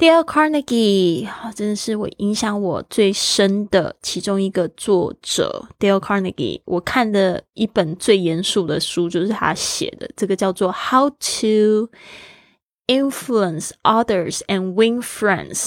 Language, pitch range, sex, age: Chinese, 185-215 Hz, female, 20-39